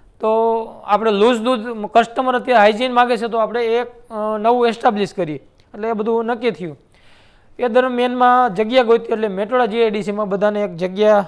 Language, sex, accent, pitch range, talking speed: Gujarati, male, native, 210-245 Hz, 160 wpm